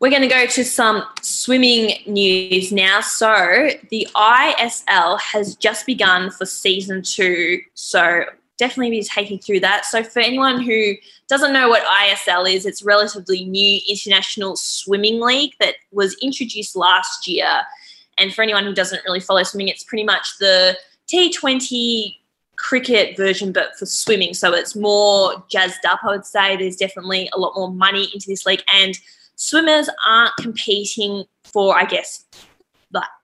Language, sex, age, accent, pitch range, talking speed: English, female, 20-39, Australian, 190-230 Hz, 155 wpm